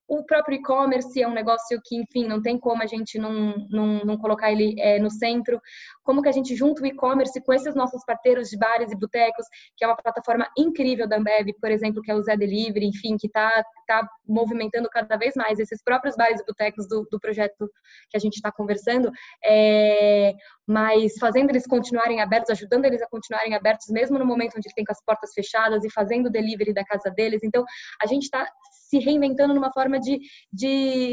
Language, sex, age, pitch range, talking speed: Portuguese, female, 10-29, 215-255 Hz, 210 wpm